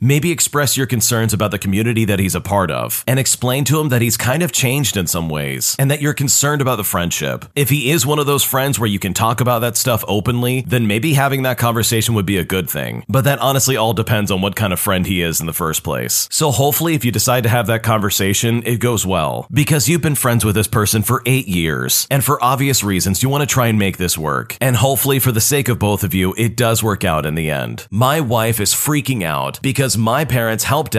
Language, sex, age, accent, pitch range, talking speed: English, male, 30-49, American, 100-135 Hz, 255 wpm